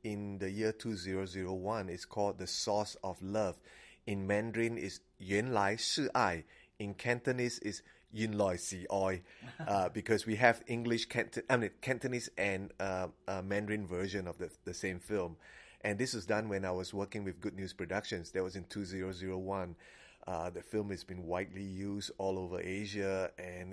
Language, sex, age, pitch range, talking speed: English, male, 30-49, 95-110 Hz, 175 wpm